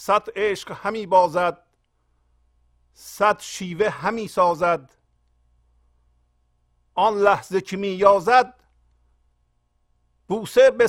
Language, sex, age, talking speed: Persian, male, 50-69, 75 wpm